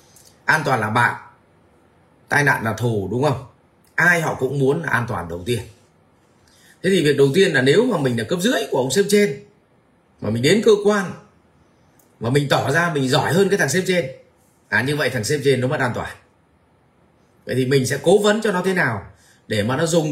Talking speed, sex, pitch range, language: 220 wpm, male, 120-170 Hz, Vietnamese